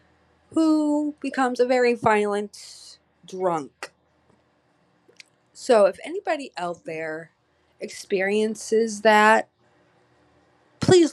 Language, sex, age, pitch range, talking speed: English, female, 20-39, 155-235 Hz, 75 wpm